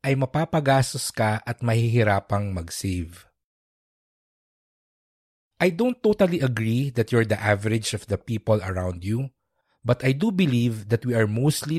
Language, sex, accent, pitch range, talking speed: English, male, Filipino, 105-135 Hz, 135 wpm